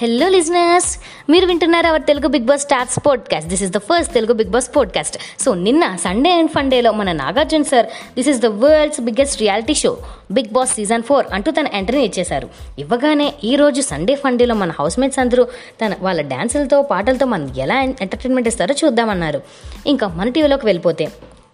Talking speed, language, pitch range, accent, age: 170 wpm, Telugu, 195-275 Hz, native, 20-39